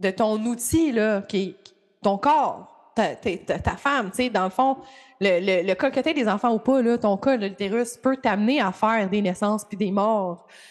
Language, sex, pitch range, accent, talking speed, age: French, female, 205-275 Hz, Canadian, 205 wpm, 20-39